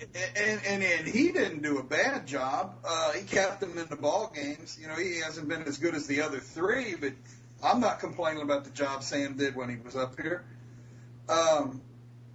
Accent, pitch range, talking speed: American, 120-155 Hz, 210 wpm